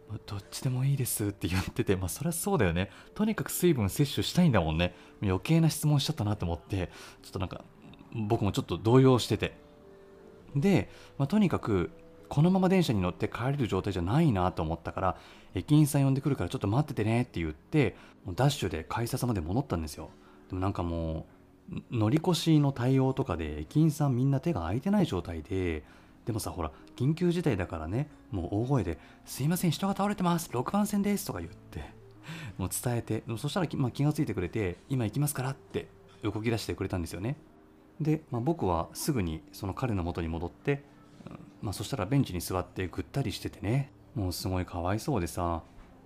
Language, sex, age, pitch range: Japanese, male, 30-49, 90-140 Hz